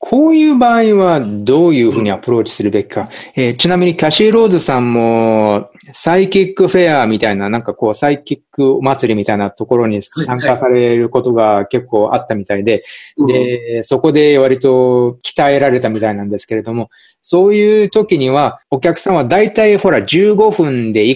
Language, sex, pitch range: Japanese, male, 120-185 Hz